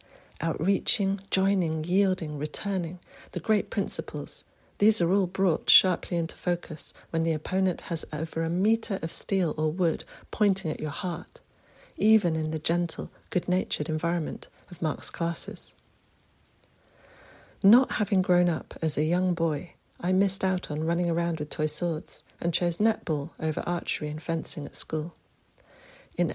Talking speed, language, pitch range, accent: 150 wpm, English, 160-190 Hz, British